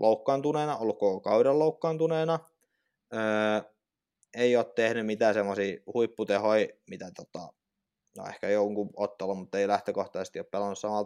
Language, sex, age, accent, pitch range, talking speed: Finnish, male, 20-39, native, 110-160 Hz, 130 wpm